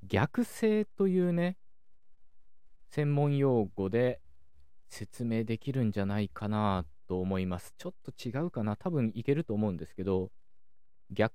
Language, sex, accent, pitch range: Japanese, male, native, 90-135 Hz